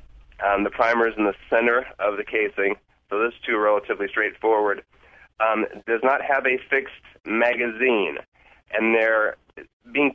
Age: 30-49